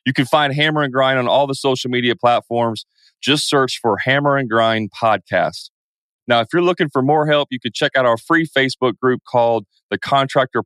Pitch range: 120-150 Hz